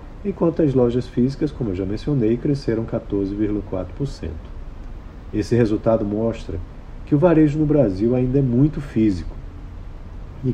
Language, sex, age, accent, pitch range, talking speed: Portuguese, male, 50-69, Brazilian, 95-135 Hz, 130 wpm